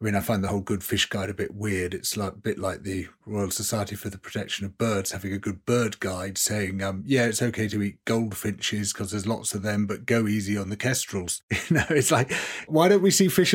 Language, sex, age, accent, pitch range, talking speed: English, male, 30-49, British, 105-135 Hz, 255 wpm